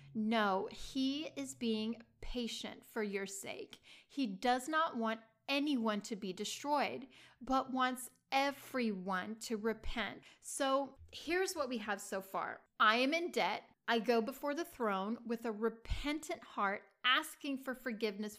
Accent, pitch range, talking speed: American, 225-280 Hz, 145 wpm